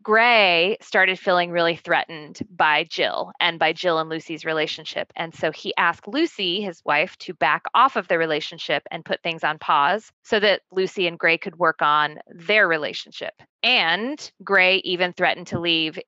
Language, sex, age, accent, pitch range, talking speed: English, female, 20-39, American, 170-205 Hz, 175 wpm